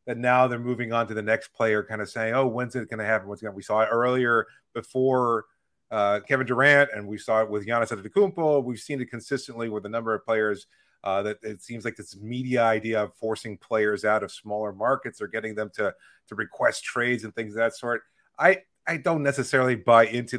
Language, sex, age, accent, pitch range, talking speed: English, male, 30-49, American, 110-130 Hz, 220 wpm